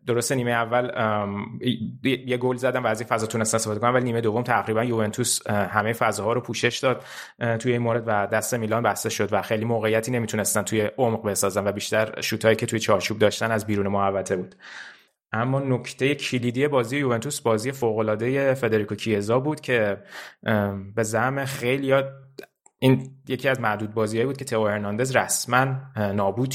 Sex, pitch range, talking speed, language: male, 110-125 Hz, 165 wpm, Persian